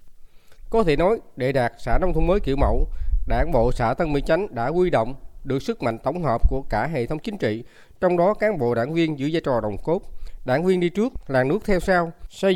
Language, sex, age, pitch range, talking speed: Vietnamese, male, 20-39, 115-185 Hz, 245 wpm